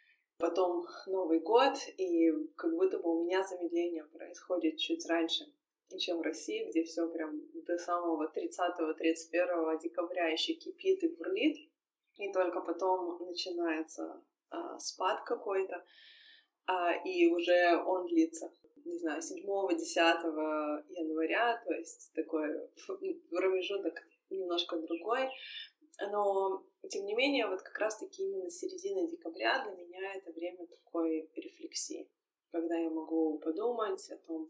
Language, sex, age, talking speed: Russian, female, 20-39, 125 wpm